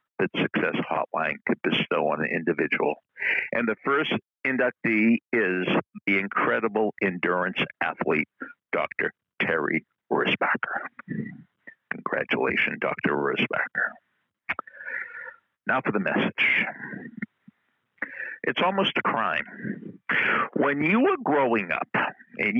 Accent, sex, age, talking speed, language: American, male, 60-79, 100 wpm, English